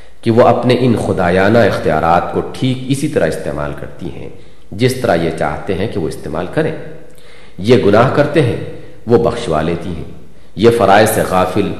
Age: 50-69